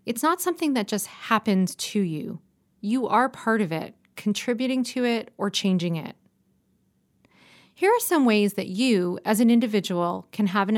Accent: American